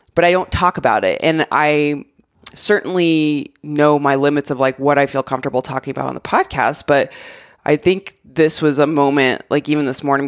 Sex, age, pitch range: female, 20-39, 140-165 Hz